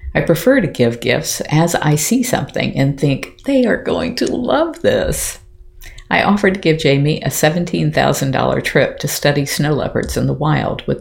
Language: English